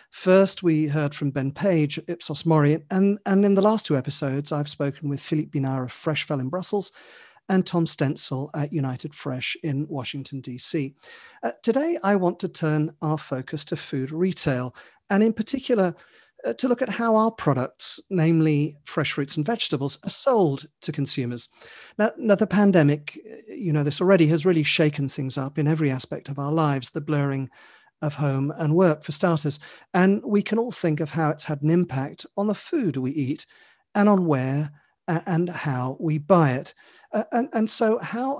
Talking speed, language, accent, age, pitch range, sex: 190 wpm, English, British, 40-59, 140-195 Hz, male